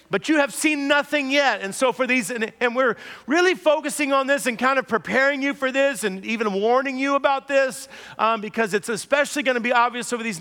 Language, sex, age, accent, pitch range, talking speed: English, male, 40-59, American, 210-270 Hz, 230 wpm